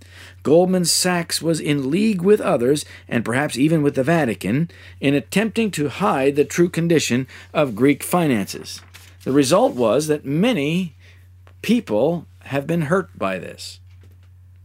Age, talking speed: 50-69, 140 wpm